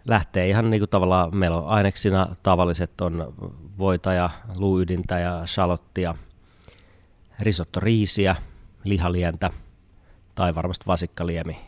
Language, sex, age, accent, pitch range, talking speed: Finnish, male, 30-49, native, 85-100 Hz, 105 wpm